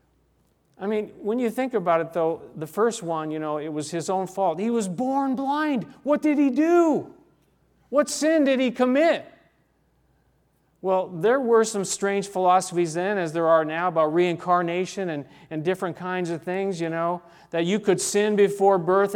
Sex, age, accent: male, 40-59, American